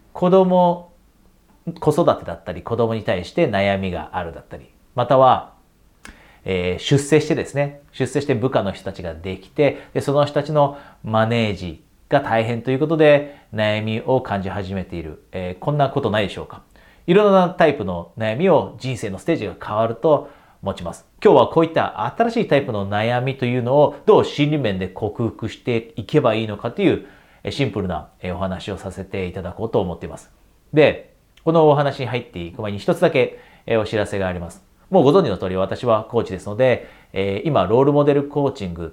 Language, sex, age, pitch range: Japanese, male, 40-59, 95-140 Hz